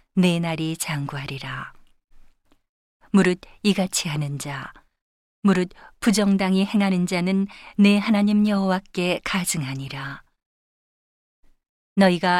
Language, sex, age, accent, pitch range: Korean, female, 40-59, native, 170-200 Hz